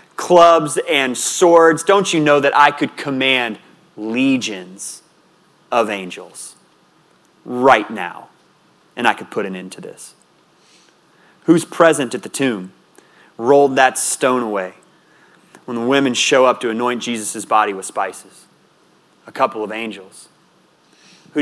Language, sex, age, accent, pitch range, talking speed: English, male, 30-49, American, 120-160 Hz, 135 wpm